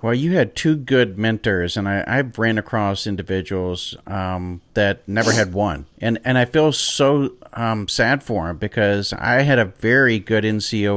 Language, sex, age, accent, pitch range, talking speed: English, male, 40-59, American, 100-120 Hz, 180 wpm